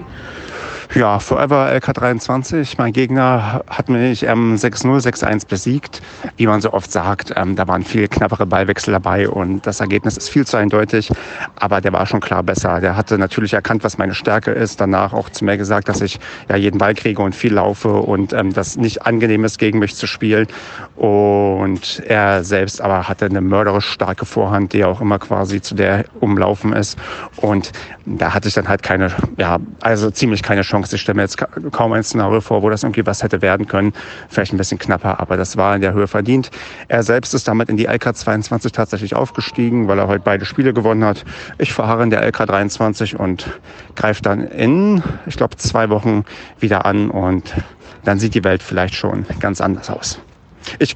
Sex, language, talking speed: male, German, 195 wpm